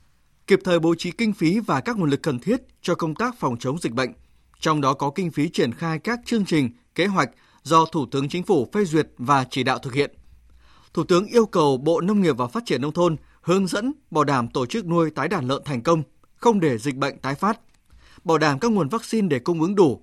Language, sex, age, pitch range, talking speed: Vietnamese, male, 20-39, 140-200 Hz, 245 wpm